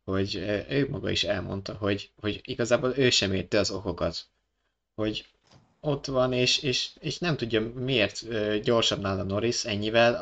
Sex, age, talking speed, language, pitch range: male, 20-39, 155 wpm, Hungarian, 100-120 Hz